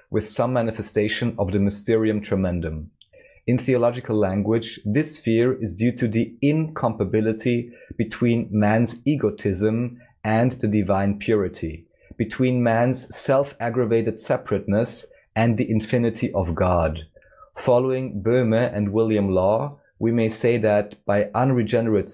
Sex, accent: male, German